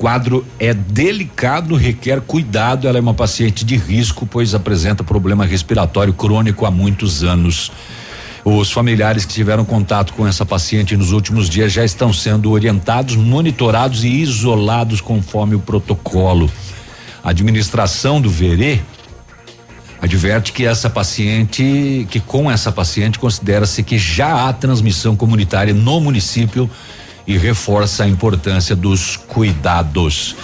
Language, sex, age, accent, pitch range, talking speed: Portuguese, male, 60-79, Brazilian, 95-115 Hz, 130 wpm